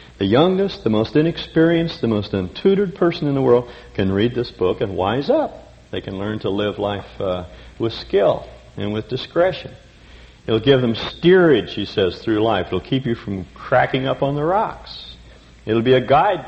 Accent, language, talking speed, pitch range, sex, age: American, English, 200 wpm, 90-115 Hz, male, 60-79